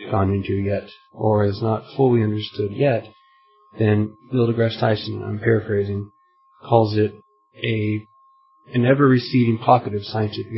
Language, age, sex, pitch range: English, 30-49, male, 110-135 Hz